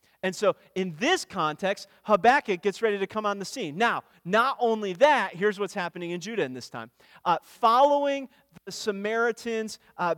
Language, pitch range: English, 165-215 Hz